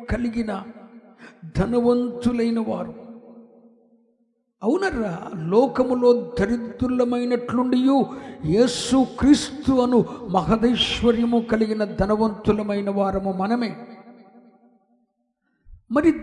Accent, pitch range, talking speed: native, 185-245 Hz, 55 wpm